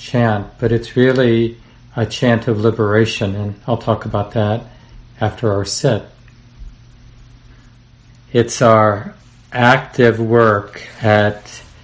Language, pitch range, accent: English, 110-120 Hz, American